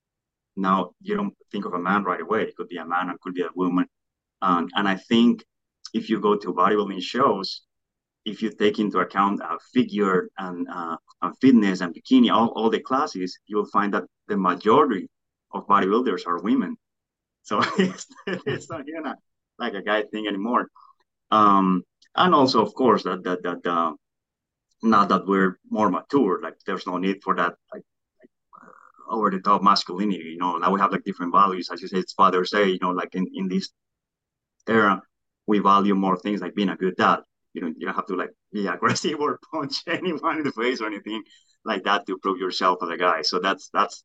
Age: 30-49